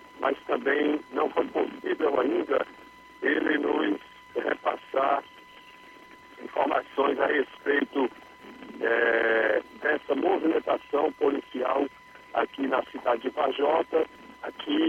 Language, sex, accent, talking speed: Portuguese, male, Brazilian, 95 wpm